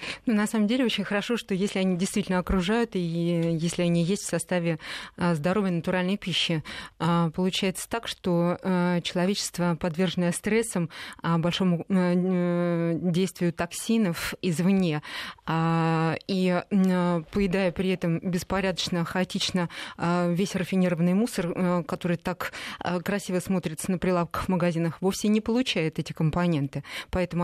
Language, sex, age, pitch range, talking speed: Russian, female, 20-39, 170-195 Hz, 115 wpm